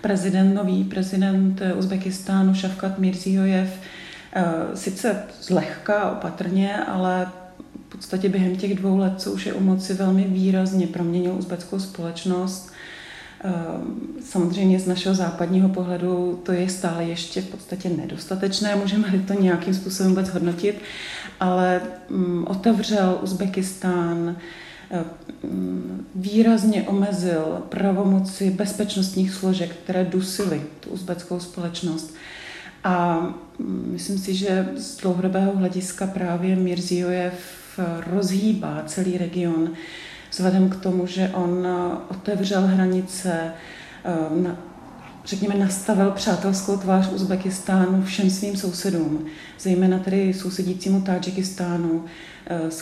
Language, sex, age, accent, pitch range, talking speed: Czech, female, 30-49, native, 175-195 Hz, 100 wpm